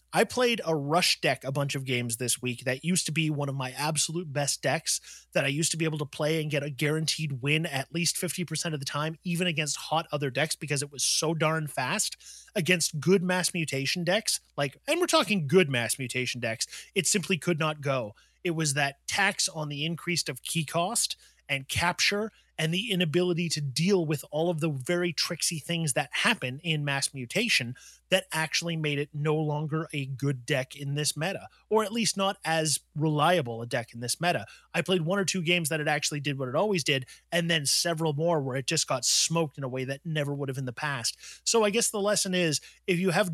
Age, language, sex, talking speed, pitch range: 30-49, English, male, 225 wpm, 145-180 Hz